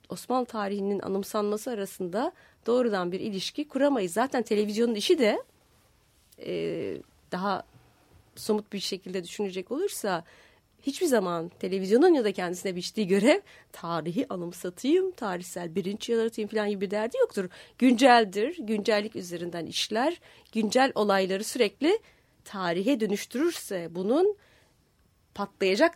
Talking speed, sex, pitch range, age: 110 wpm, female, 190-240 Hz, 30-49